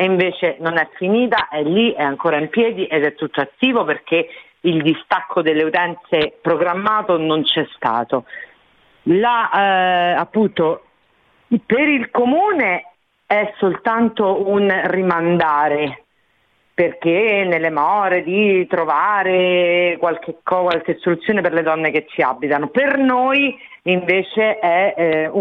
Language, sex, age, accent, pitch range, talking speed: Italian, female, 50-69, native, 170-230 Hz, 130 wpm